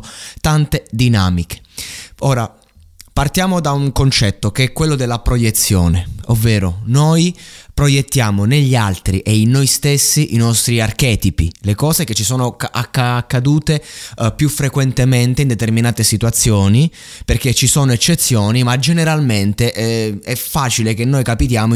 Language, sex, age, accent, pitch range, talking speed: Italian, male, 20-39, native, 105-130 Hz, 135 wpm